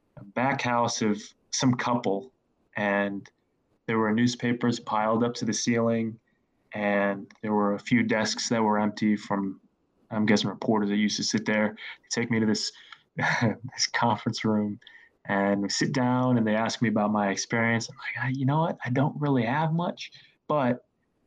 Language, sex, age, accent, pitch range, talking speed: English, male, 20-39, American, 110-130 Hz, 170 wpm